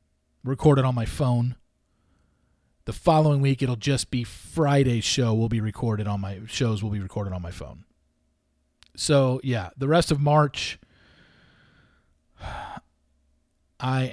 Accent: American